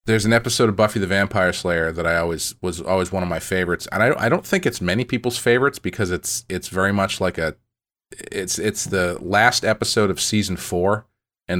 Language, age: English, 40-59